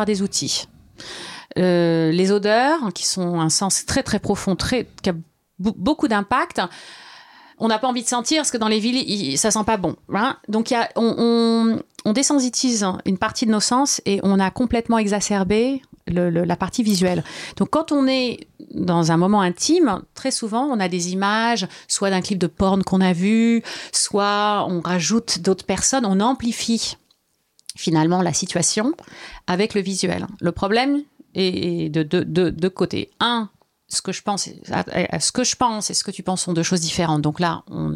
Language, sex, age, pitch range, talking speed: French, female, 30-49, 180-235 Hz, 195 wpm